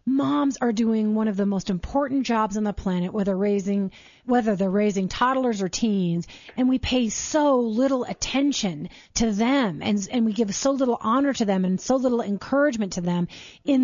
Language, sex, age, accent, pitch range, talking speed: English, female, 30-49, American, 210-275 Hz, 190 wpm